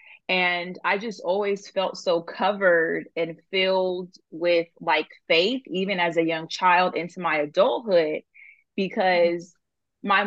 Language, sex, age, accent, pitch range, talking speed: English, female, 20-39, American, 170-200 Hz, 130 wpm